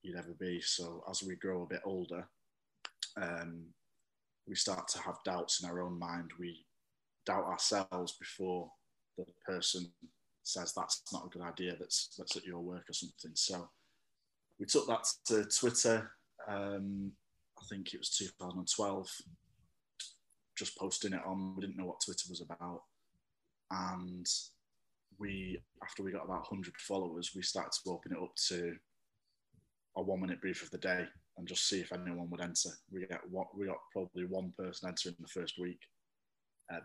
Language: English